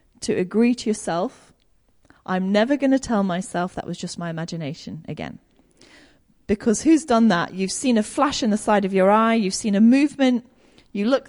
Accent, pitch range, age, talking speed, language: British, 190-245 Hz, 30-49, 190 wpm, English